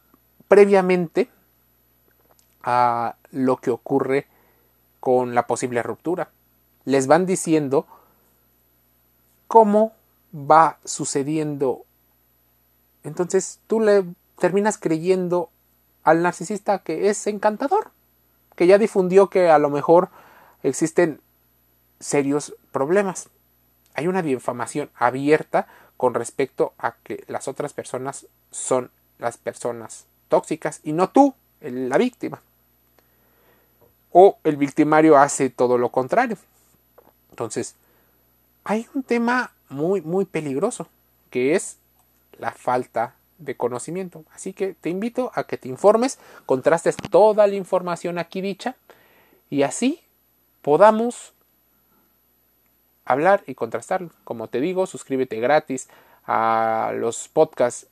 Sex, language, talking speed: male, Spanish, 105 wpm